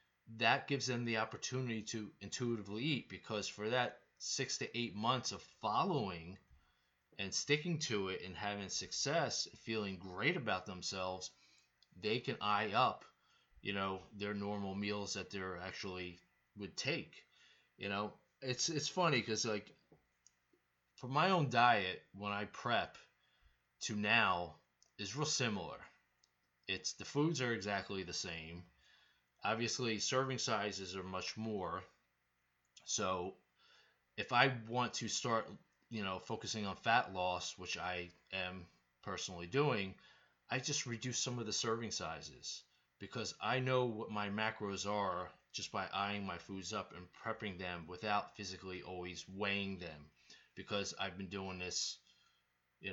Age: 20-39